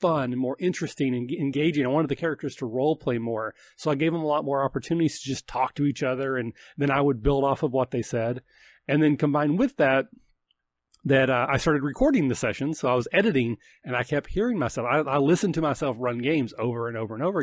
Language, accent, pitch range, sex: English, American, 125-160 Hz, male